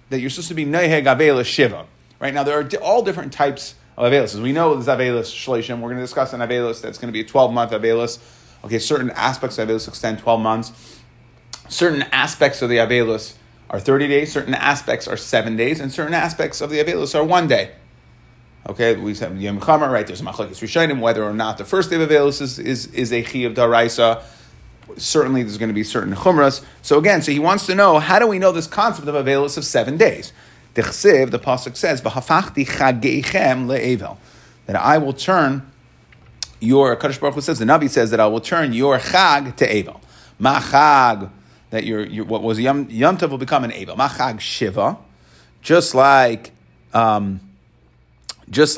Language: English